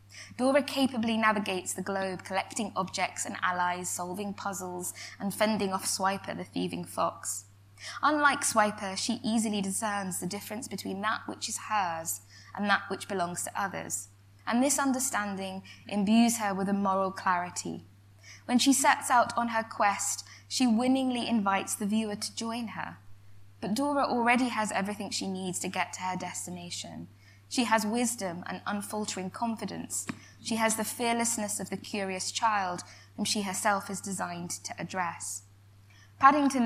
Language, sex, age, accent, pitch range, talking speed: English, female, 20-39, British, 180-225 Hz, 155 wpm